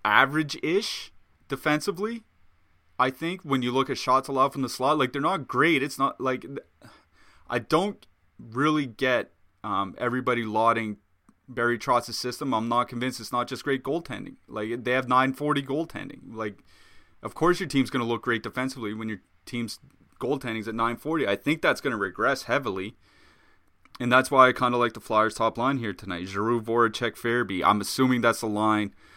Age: 20-39